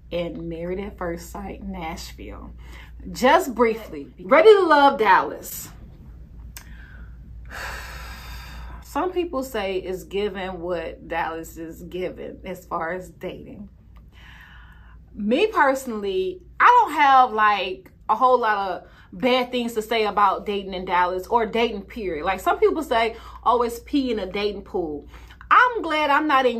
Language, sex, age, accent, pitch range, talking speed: English, female, 30-49, American, 185-260 Hz, 140 wpm